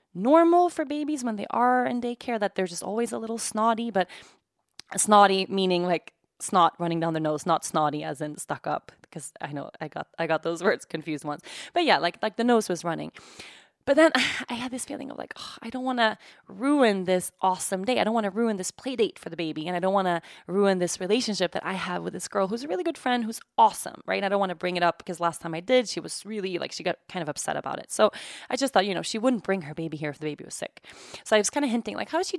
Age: 20-39